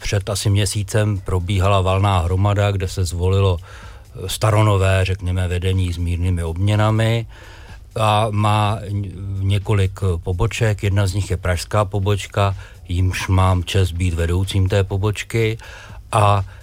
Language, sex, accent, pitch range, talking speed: Czech, male, native, 90-100 Hz, 120 wpm